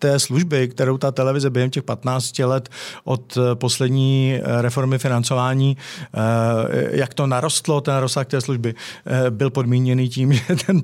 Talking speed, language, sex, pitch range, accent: 140 wpm, Czech, male, 120-140 Hz, native